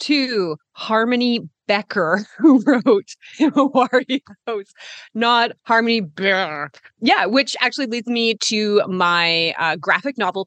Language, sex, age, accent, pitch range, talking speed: English, female, 30-49, American, 175-240 Hz, 110 wpm